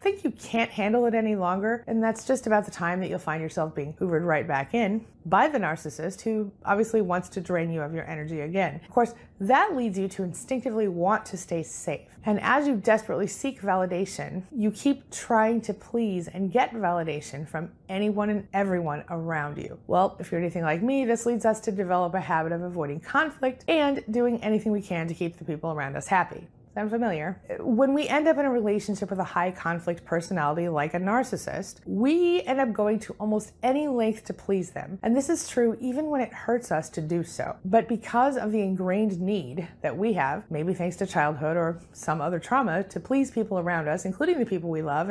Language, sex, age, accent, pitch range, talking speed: English, female, 30-49, American, 170-235 Hz, 215 wpm